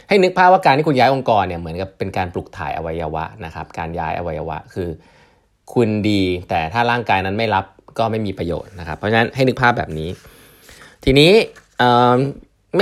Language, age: Thai, 20-39